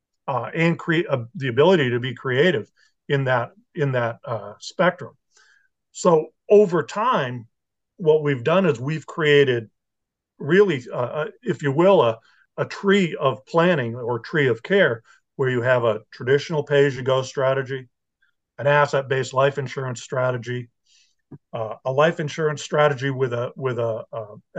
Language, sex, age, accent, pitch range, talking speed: English, male, 50-69, American, 125-155 Hz, 150 wpm